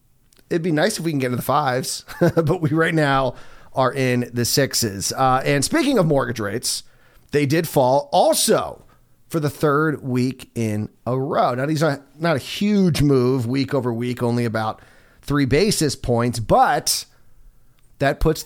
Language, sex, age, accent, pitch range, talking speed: English, male, 30-49, American, 120-150 Hz, 170 wpm